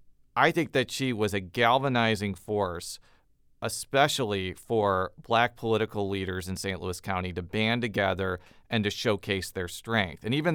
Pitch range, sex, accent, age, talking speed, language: 100-120 Hz, male, American, 40-59, 155 wpm, English